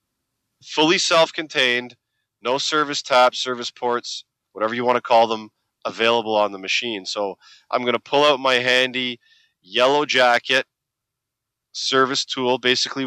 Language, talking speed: English, 140 wpm